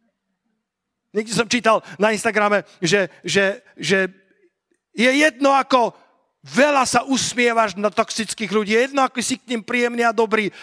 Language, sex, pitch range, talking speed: Slovak, male, 175-210 Hz, 145 wpm